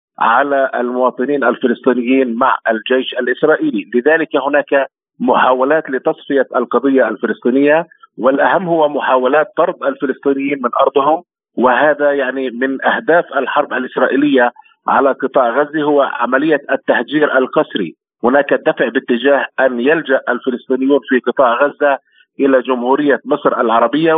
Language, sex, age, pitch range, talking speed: Arabic, male, 50-69, 130-150 Hz, 110 wpm